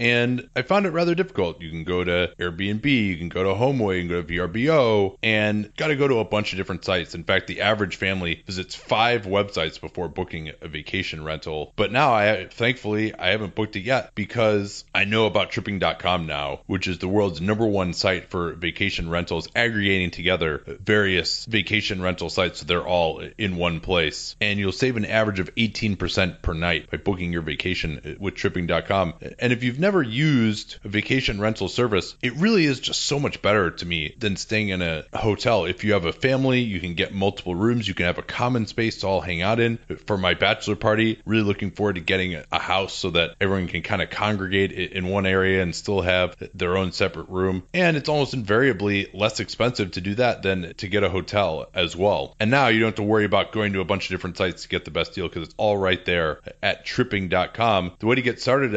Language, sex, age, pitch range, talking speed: English, male, 30-49, 90-110 Hz, 220 wpm